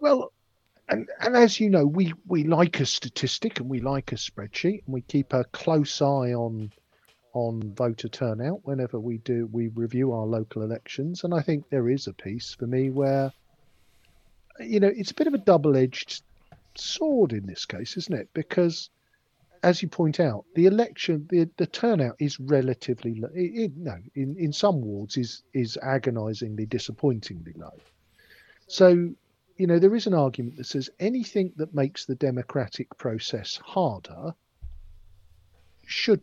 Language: English